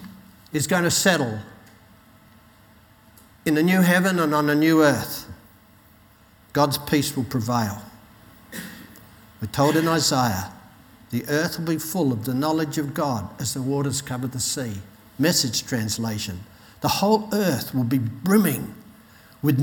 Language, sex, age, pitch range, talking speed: English, male, 60-79, 110-160 Hz, 140 wpm